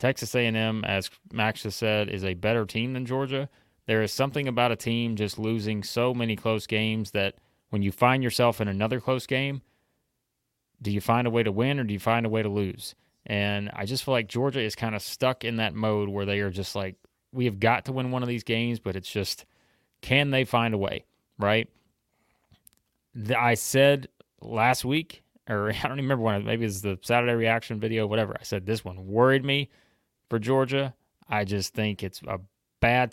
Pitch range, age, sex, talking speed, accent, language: 105-125 Hz, 30-49, male, 210 wpm, American, English